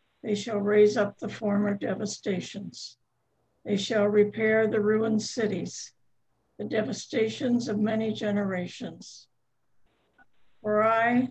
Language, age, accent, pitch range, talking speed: English, 60-79, American, 205-235 Hz, 105 wpm